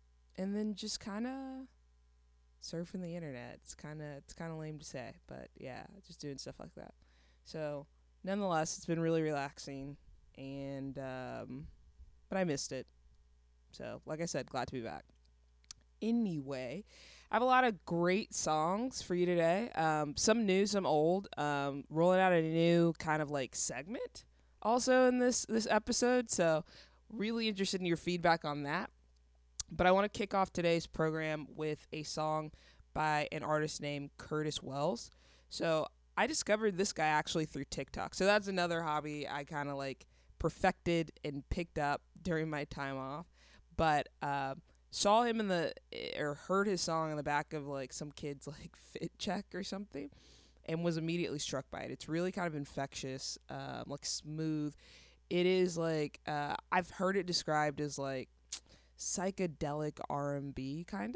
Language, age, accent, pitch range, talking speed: English, 20-39, American, 140-185 Hz, 170 wpm